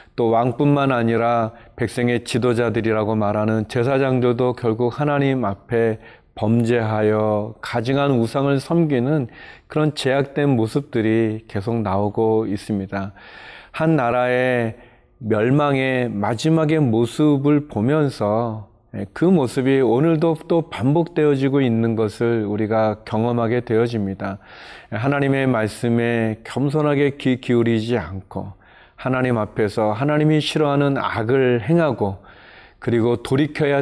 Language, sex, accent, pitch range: Korean, male, native, 110-140 Hz